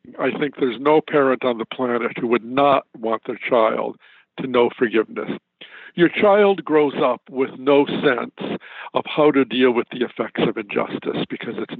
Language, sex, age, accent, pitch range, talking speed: English, male, 60-79, American, 125-155 Hz, 180 wpm